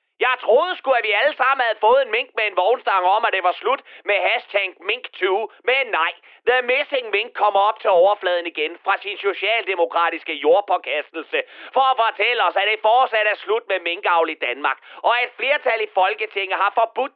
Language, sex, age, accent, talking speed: Danish, male, 30-49, native, 195 wpm